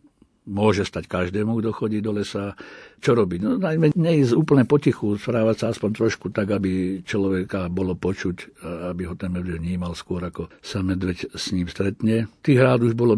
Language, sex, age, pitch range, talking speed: Slovak, male, 60-79, 90-100 Hz, 180 wpm